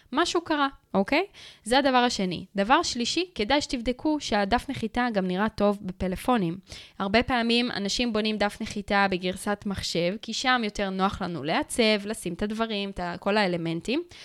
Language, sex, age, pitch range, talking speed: Hebrew, female, 20-39, 190-245 Hz, 150 wpm